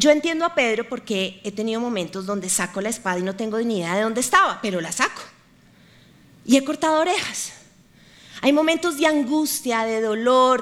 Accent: Colombian